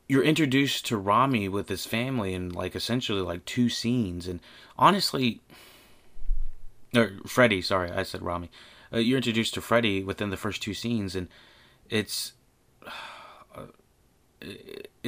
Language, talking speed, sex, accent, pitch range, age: English, 135 wpm, male, American, 95-120 Hz, 30-49